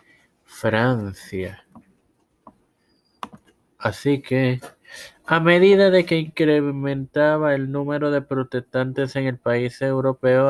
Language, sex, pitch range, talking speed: Spanish, male, 120-145 Hz, 90 wpm